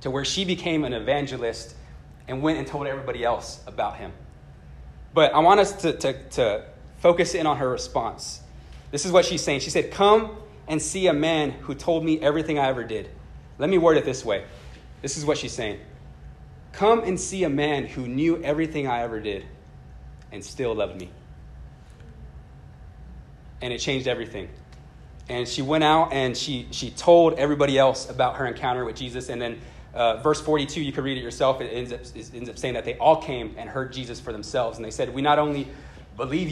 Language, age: English, 30-49